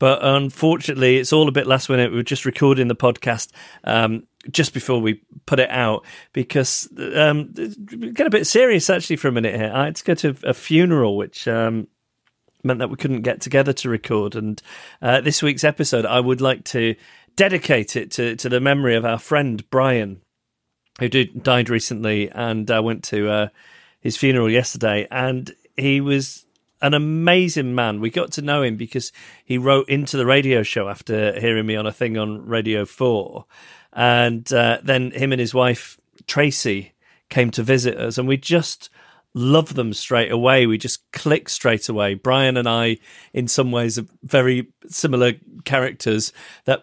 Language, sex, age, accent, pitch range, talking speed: English, male, 40-59, British, 115-135 Hz, 185 wpm